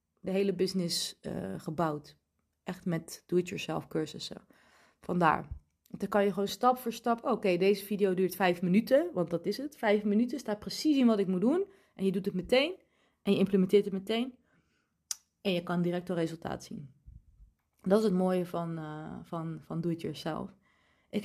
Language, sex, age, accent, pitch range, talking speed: Dutch, female, 30-49, Dutch, 180-230 Hz, 170 wpm